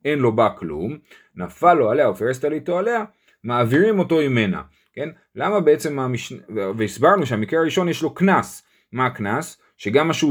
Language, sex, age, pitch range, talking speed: Hebrew, male, 30-49, 110-165 Hz, 155 wpm